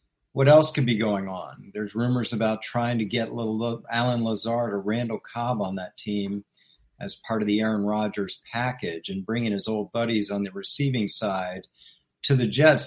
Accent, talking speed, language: American, 185 wpm, English